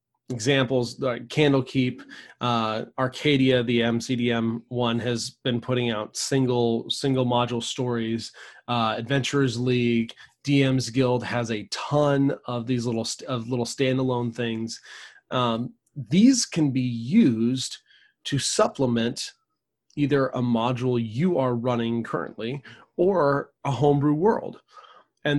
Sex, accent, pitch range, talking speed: male, American, 120-140 Hz, 120 wpm